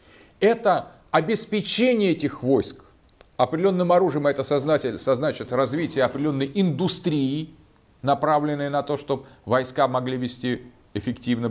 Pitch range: 115-170 Hz